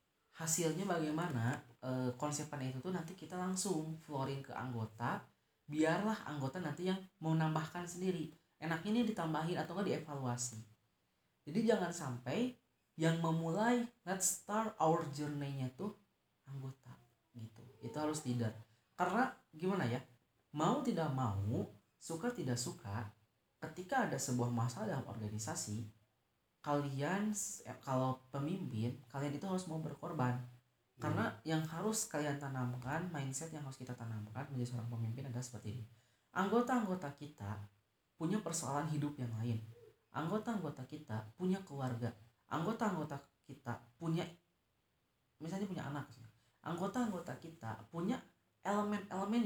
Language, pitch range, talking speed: English, 125-180 Hz, 120 wpm